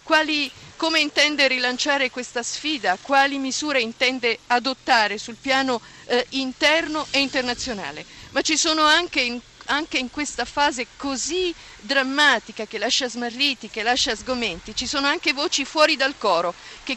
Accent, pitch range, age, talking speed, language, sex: native, 240-280 Hz, 50-69, 140 wpm, Italian, female